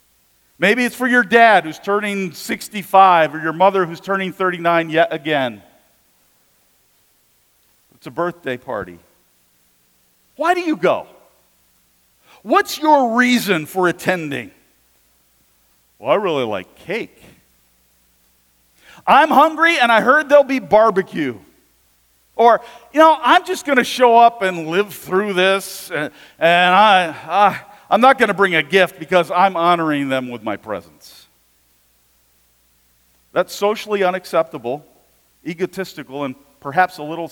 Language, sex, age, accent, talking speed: English, male, 50-69, American, 130 wpm